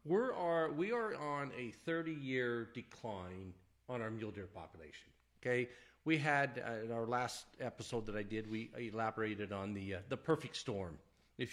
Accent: American